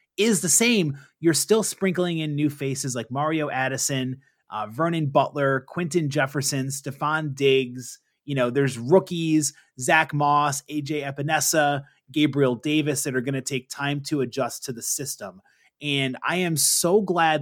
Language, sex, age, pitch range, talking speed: English, male, 30-49, 135-165 Hz, 155 wpm